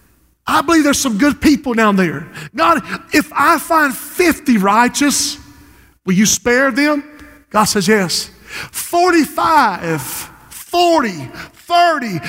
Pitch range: 235-300 Hz